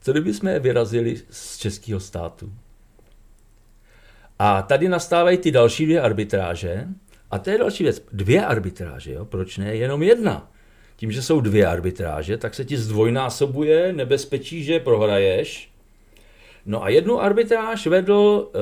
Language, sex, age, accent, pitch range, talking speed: Czech, male, 50-69, native, 105-155 Hz, 135 wpm